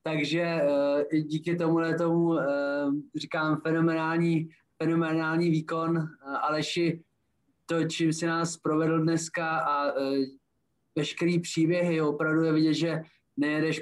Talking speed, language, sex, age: 105 wpm, Slovak, male, 20-39